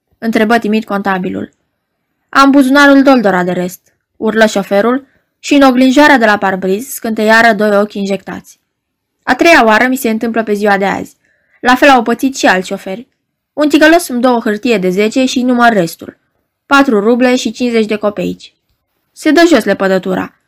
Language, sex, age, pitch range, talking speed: Romanian, female, 20-39, 200-265 Hz, 175 wpm